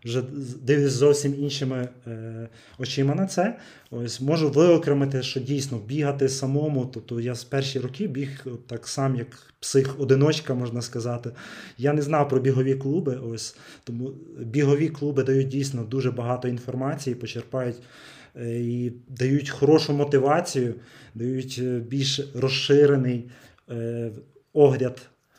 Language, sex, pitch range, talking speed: Ukrainian, male, 120-140 Hz, 125 wpm